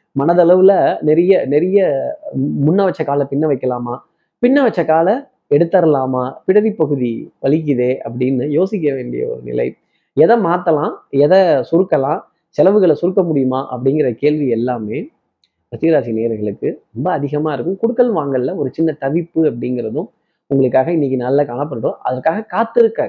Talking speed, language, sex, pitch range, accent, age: 120 wpm, Tamil, male, 130-190 Hz, native, 20-39